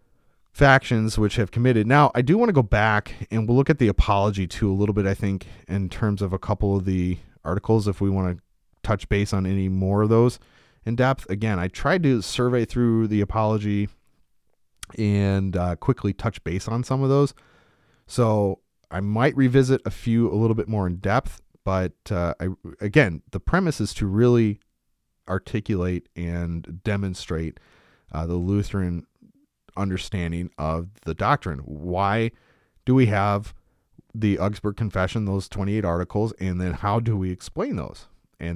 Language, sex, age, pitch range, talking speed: English, male, 30-49, 90-115 Hz, 170 wpm